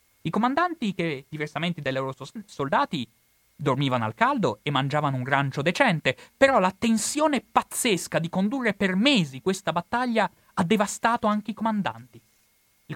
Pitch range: 135-195 Hz